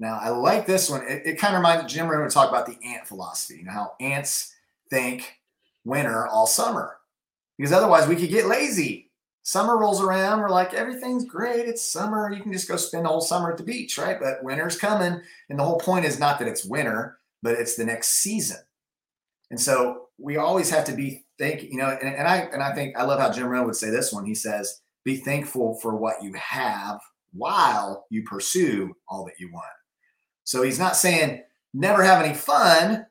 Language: English